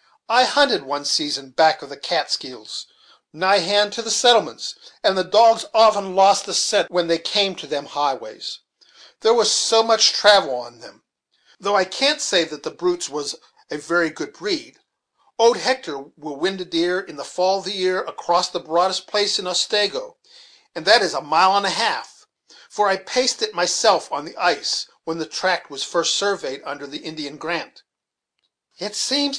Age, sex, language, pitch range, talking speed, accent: 50-69, male, English, 175-270 Hz, 185 wpm, American